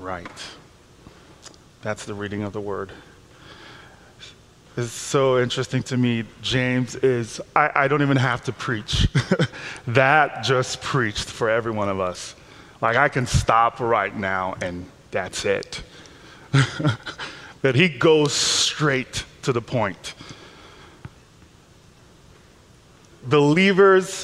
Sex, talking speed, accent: male, 115 wpm, American